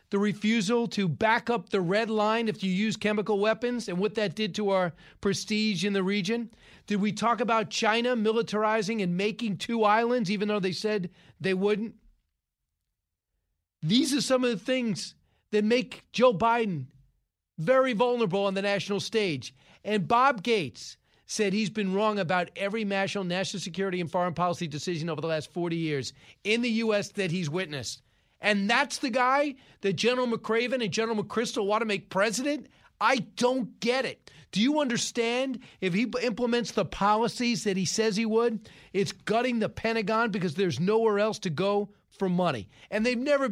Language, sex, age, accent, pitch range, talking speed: English, male, 40-59, American, 180-230 Hz, 175 wpm